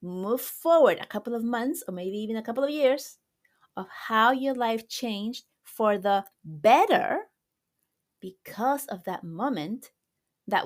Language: English